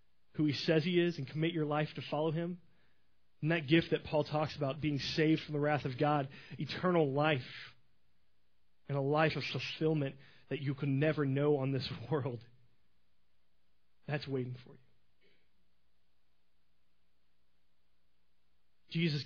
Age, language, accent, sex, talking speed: 30-49, English, American, male, 145 wpm